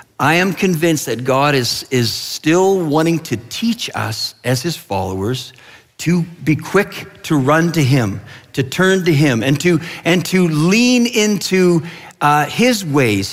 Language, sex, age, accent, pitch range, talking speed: English, male, 50-69, American, 130-180 Hz, 160 wpm